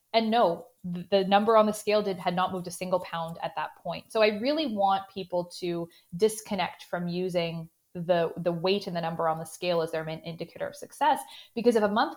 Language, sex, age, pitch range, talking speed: English, female, 20-39, 170-215 Hz, 220 wpm